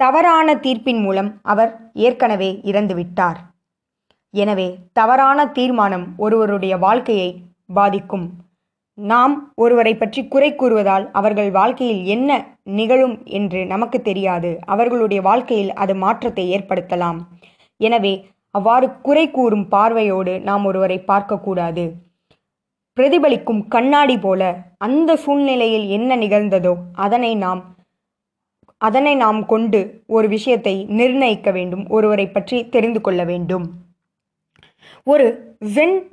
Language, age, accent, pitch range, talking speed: Tamil, 20-39, native, 195-245 Hz, 100 wpm